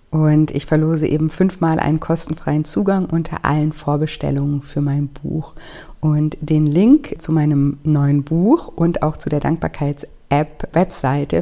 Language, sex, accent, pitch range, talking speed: German, female, German, 145-165 Hz, 135 wpm